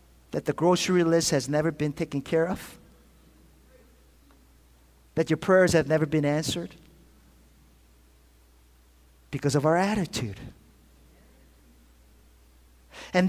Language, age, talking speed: English, 50-69, 100 wpm